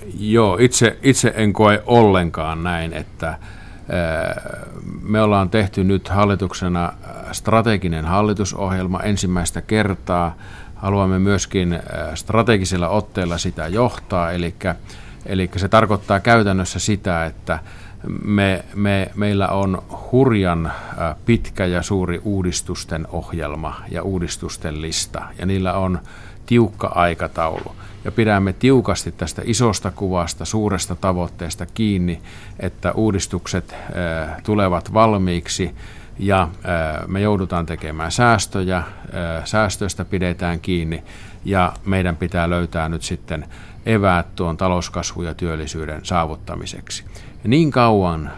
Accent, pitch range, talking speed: native, 85-105 Hz, 100 wpm